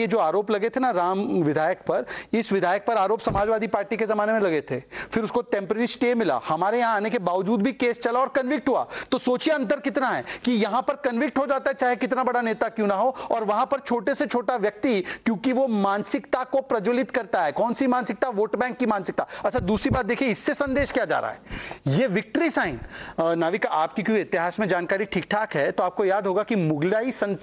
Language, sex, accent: English, male, Indian